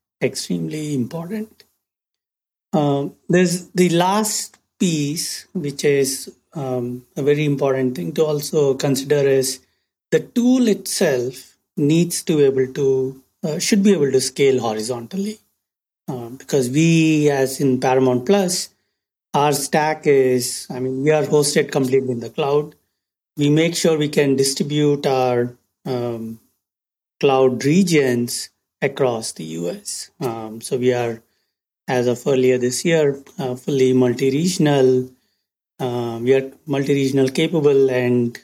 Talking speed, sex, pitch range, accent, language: 130 wpm, male, 125-155 Hz, Indian, English